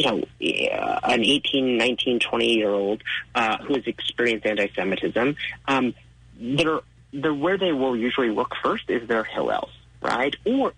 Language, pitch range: English, 120-165 Hz